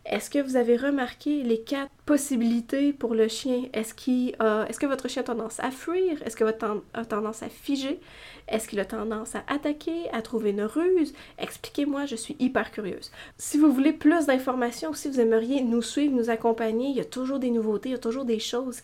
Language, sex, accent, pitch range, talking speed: French, female, Canadian, 225-275 Hz, 215 wpm